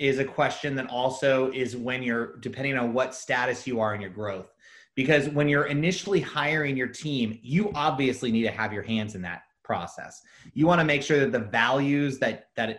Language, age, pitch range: English, 30-49, 120-150 Hz